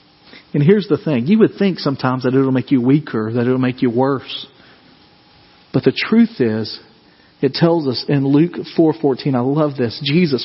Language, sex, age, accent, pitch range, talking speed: English, male, 40-59, American, 145-185 Hz, 195 wpm